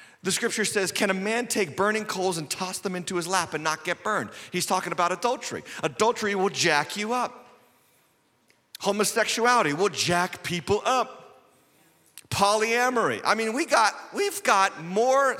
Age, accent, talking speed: 40-59, American, 160 wpm